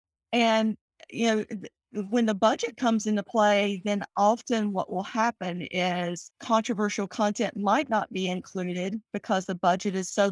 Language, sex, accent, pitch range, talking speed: English, female, American, 185-235 Hz, 150 wpm